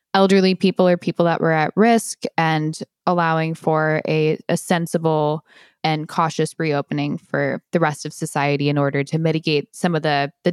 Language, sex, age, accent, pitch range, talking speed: English, female, 10-29, American, 160-205 Hz, 170 wpm